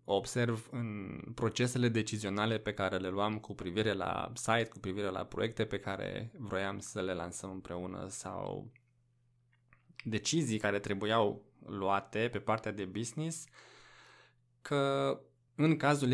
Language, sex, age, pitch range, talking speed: Romanian, male, 20-39, 105-120 Hz, 130 wpm